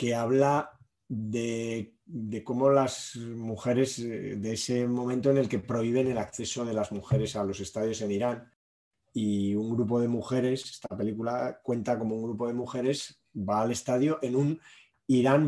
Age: 20-39